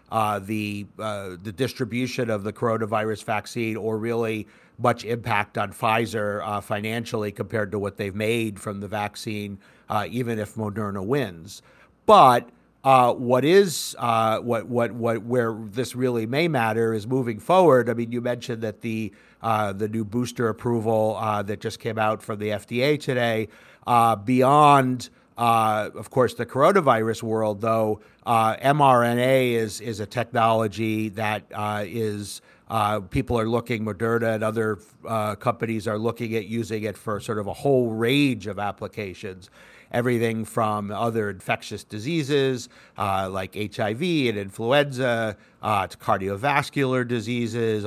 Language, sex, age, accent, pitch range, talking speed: English, male, 50-69, American, 110-125 Hz, 150 wpm